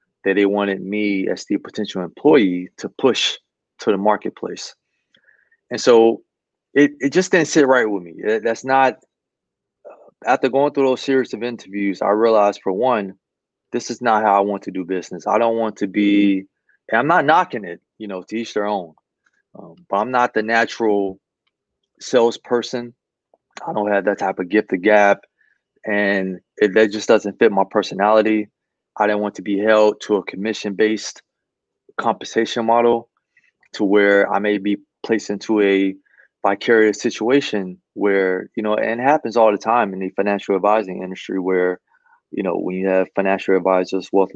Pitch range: 95-110 Hz